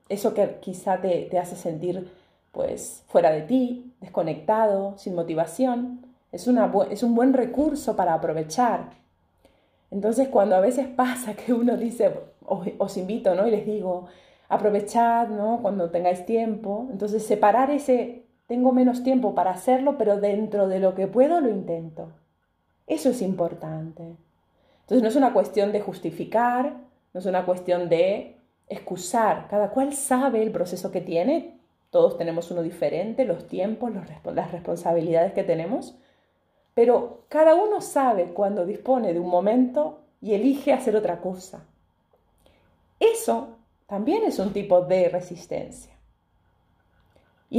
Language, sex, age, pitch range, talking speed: Spanish, female, 30-49, 185-255 Hz, 145 wpm